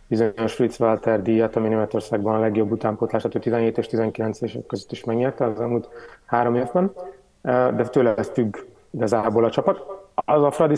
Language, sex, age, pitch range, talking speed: Hungarian, male, 30-49, 115-130 Hz, 165 wpm